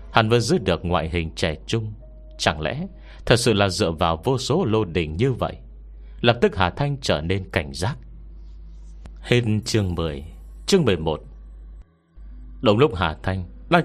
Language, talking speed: Vietnamese, 170 wpm